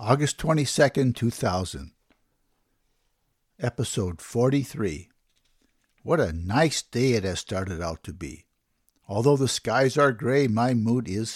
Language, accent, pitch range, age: English, American, 100-130 Hz, 60-79